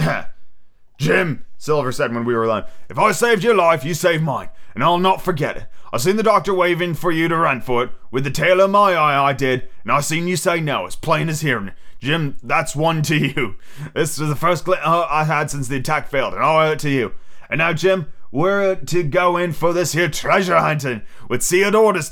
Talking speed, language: 235 wpm, English